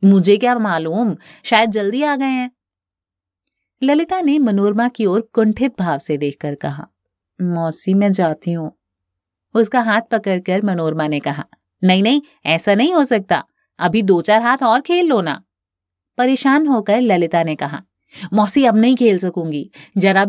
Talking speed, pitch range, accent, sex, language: 155 wpm, 165-245 Hz, native, female, Hindi